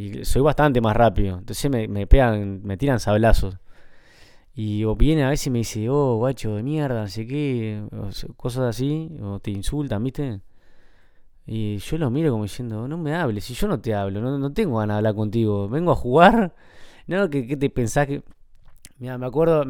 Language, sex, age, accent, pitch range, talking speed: Spanish, male, 20-39, Argentinian, 110-155 Hz, 195 wpm